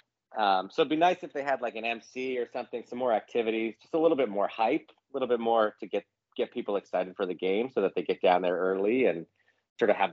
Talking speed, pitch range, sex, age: 265 wpm, 105-135 Hz, male, 30-49